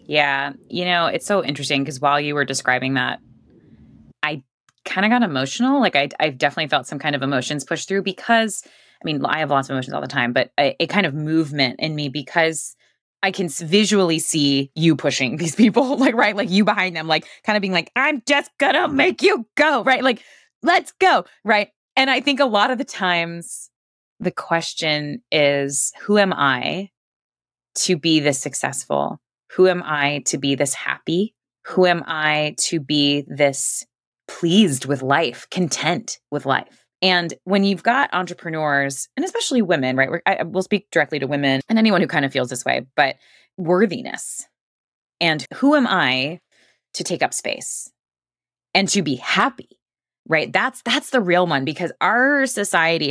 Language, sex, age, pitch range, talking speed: English, female, 20-39, 140-205 Hz, 180 wpm